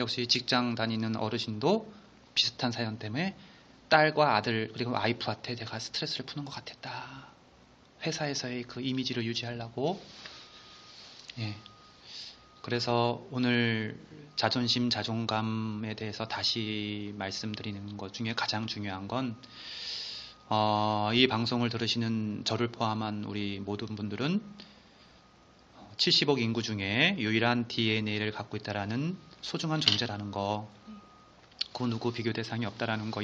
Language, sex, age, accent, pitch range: Korean, male, 30-49, native, 110-130 Hz